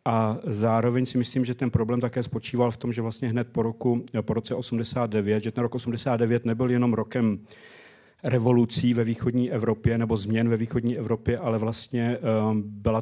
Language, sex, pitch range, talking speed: Czech, male, 110-120 Hz, 175 wpm